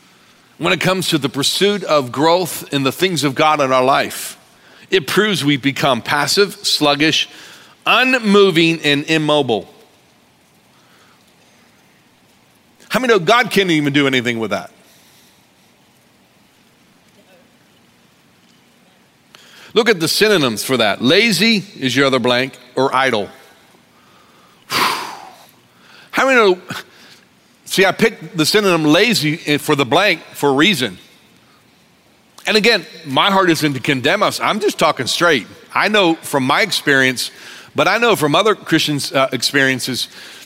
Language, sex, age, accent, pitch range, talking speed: English, male, 50-69, American, 140-190 Hz, 130 wpm